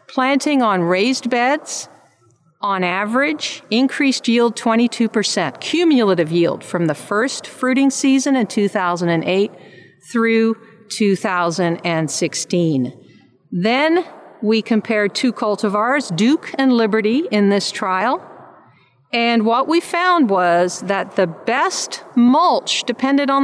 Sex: female